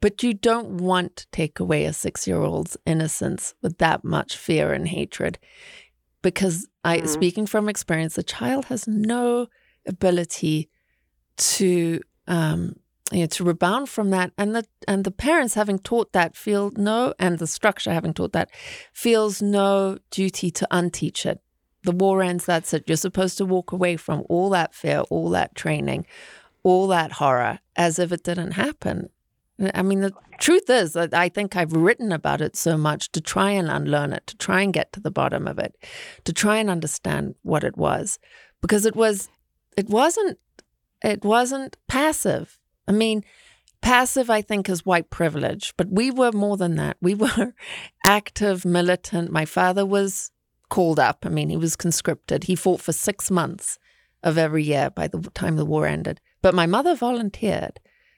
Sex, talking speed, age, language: female, 175 wpm, 30-49, English